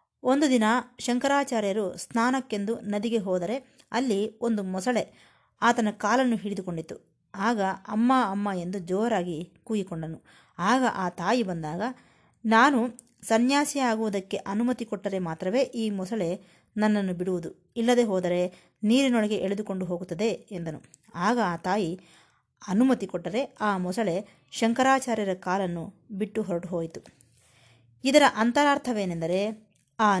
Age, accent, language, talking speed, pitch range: 20-39, native, Kannada, 105 wpm, 185-235 Hz